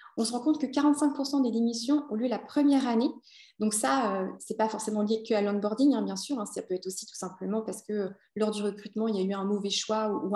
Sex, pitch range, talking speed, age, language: female, 215-260 Hz, 270 wpm, 20-39, French